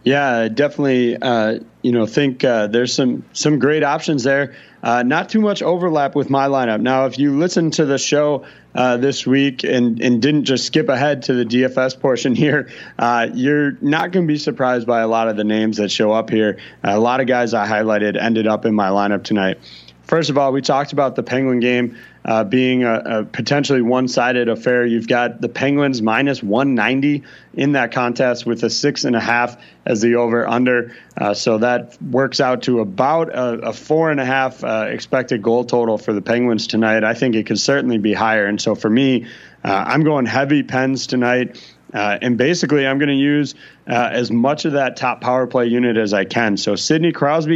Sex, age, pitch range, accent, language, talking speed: male, 30-49, 115-140 Hz, American, English, 210 wpm